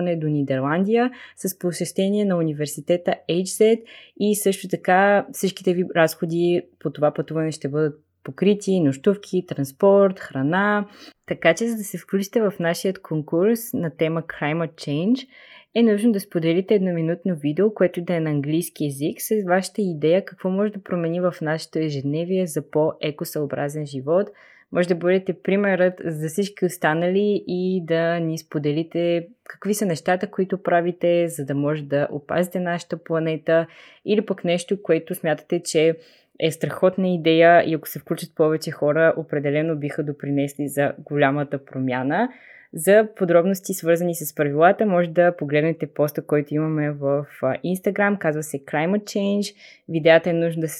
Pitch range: 155-190 Hz